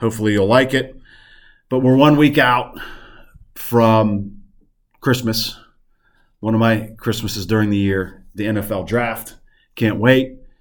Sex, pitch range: male, 110-130 Hz